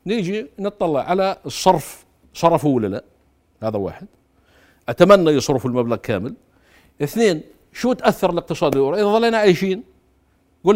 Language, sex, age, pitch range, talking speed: Arabic, male, 50-69, 125-190 Hz, 110 wpm